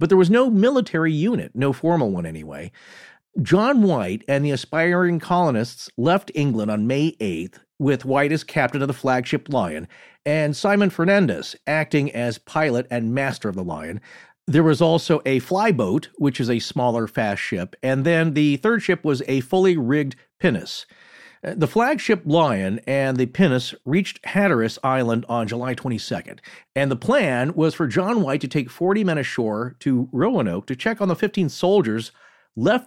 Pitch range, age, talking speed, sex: 125-175 Hz, 40-59, 170 wpm, male